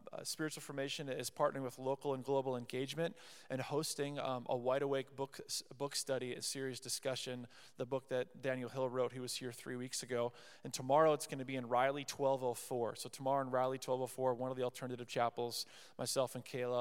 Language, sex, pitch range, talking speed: English, male, 125-145 Hz, 195 wpm